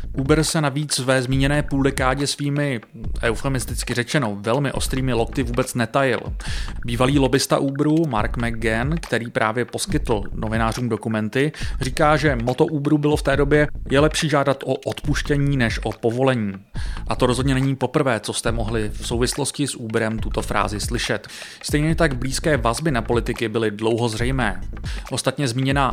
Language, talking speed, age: Czech, 155 wpm, 30-49